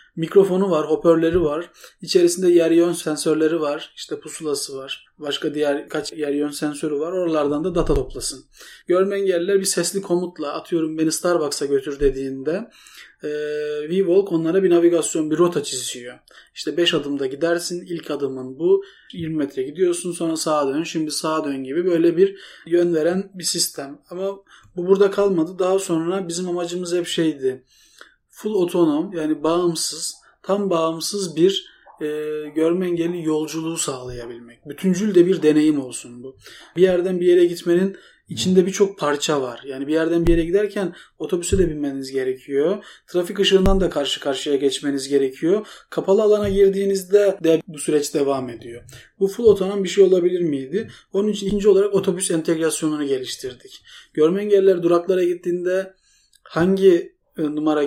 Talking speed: 150 wpm